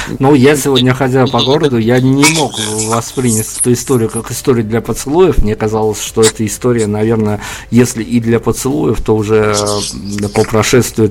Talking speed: 160 wpm